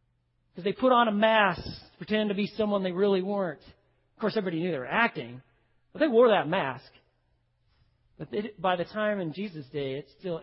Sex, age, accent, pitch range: male, 40-59, American, 120-185 Hz